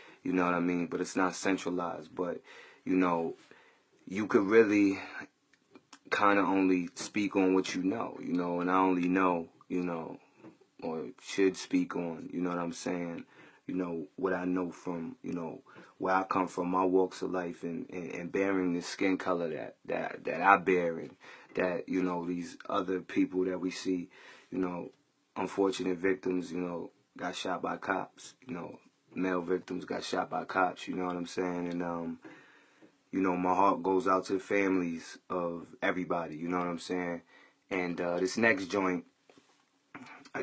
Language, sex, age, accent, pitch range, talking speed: English, male, 30-49, American, 90-95 Hz, 185 wpm